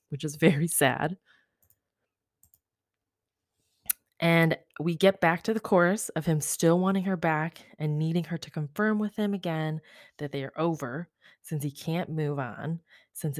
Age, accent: 20-39, American